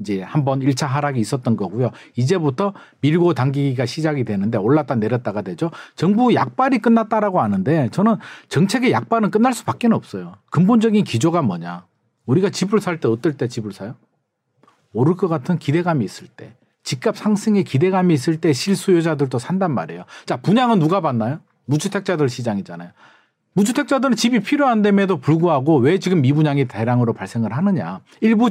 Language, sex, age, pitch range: Korean, male, 40-59, 130-210 Hz